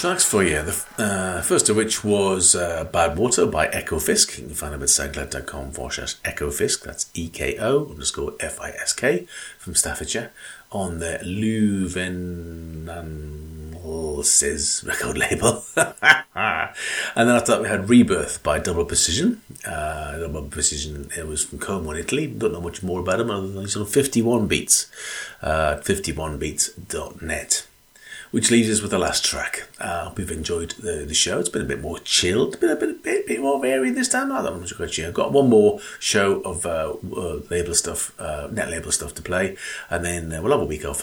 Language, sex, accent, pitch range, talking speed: English, male, British, 80-125 Hz, 180 wpm